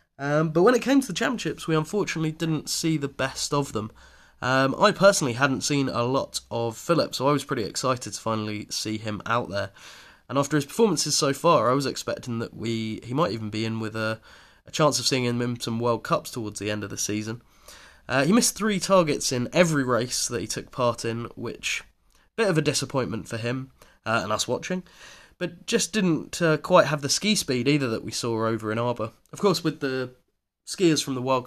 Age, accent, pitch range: 20-39, British, 115-155 Hz